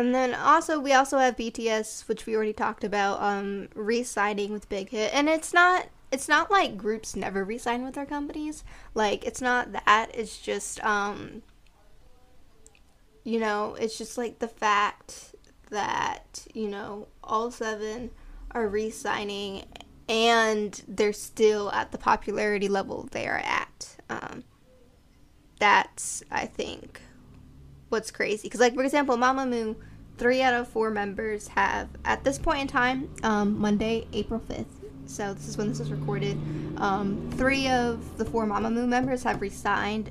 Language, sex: English, female